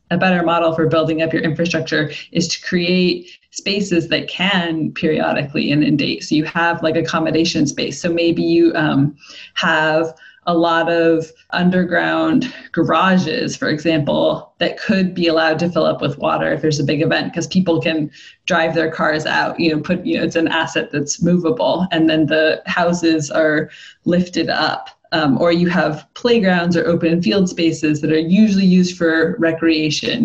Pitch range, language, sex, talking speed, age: 155-180 Hz, English, female, 175 wpm, 20-39